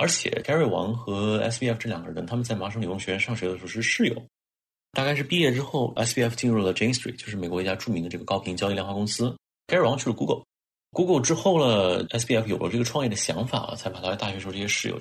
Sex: male